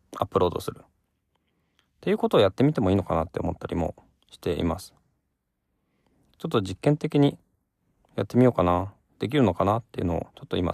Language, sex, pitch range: Japanese, male, 90-115 Hz